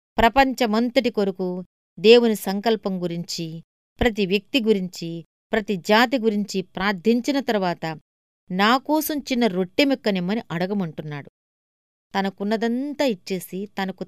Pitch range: 185-235 Hz